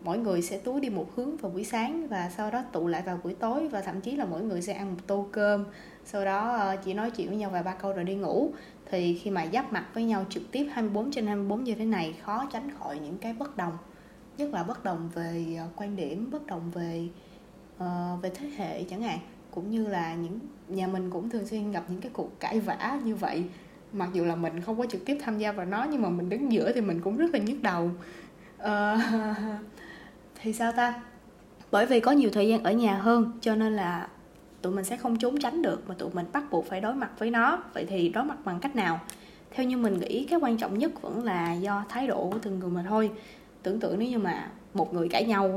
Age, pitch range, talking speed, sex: 20-39, 180-235 Hz, 250 wpm, female